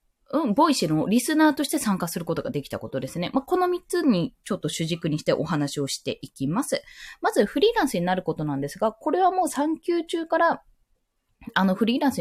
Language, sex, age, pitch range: Japanese, female, 20-39, 175-285 Hz